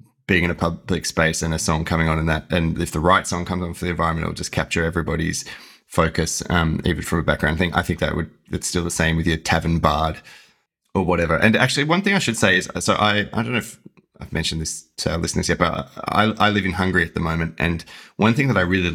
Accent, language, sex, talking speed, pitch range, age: Australian, English, male, 265 wpm, 80-95 Hz, 20-39